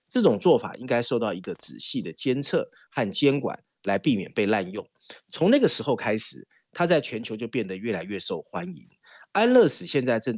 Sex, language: male, Chinese